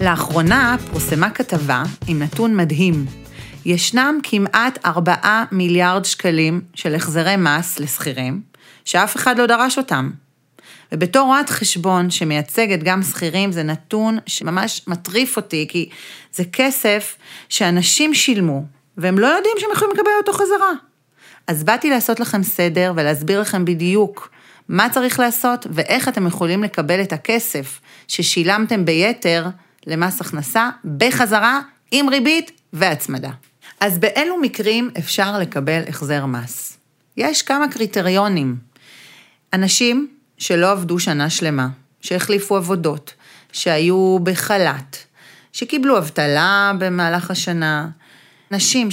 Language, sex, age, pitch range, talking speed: Hebrew, female, 30-49, 160-230 Hz, 115 wpm